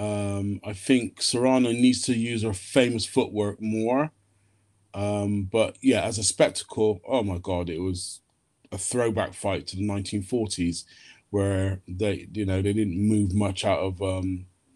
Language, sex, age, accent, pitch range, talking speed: English, male, 30-49, British, 95-135 Hz, 165 wpm